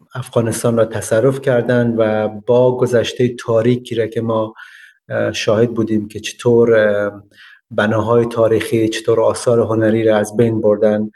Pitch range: 110-130 Hz